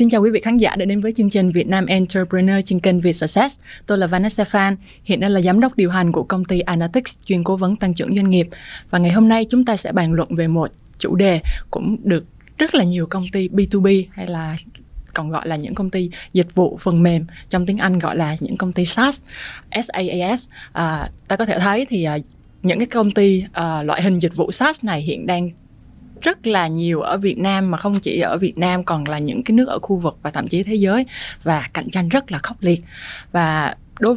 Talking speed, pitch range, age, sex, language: 240 wpm, 175-215 Hz, 20-39, female, Vietnamese